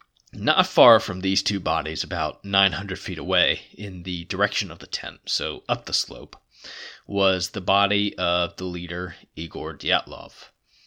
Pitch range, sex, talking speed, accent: 90-105 Hz, male, 155 wpm, American